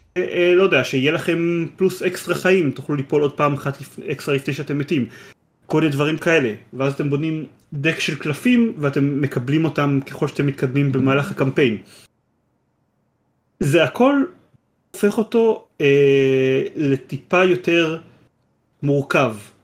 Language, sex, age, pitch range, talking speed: Hebrew, male, 30-49, 125-165 Hz, 125 wpm